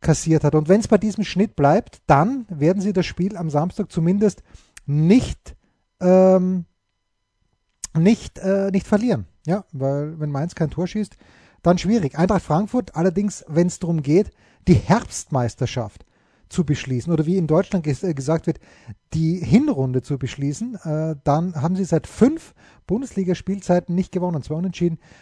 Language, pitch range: German, 145-185 Hz